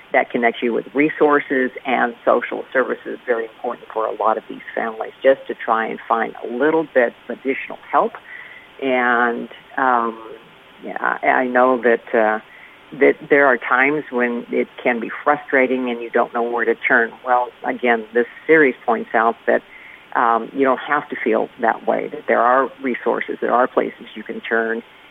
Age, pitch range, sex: 50-69, 115-135 Hz, female